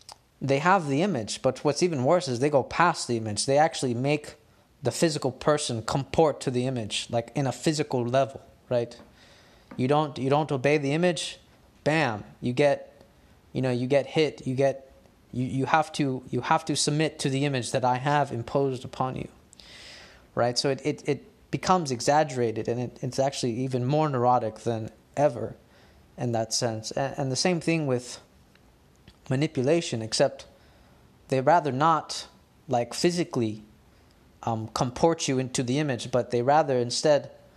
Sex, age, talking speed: male, 20-39, 155 wpm